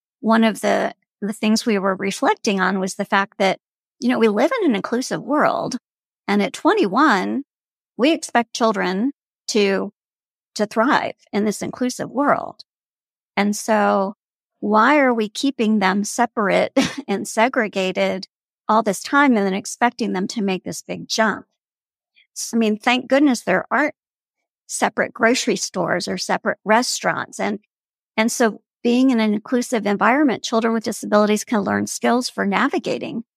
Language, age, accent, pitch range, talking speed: English, 50-69, American, 205-245 Hz, 155 wpm